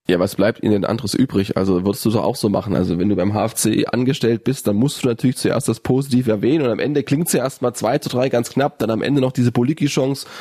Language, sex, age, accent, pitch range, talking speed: German, male, 20-39, German, 110-135 Hz, 270 wpm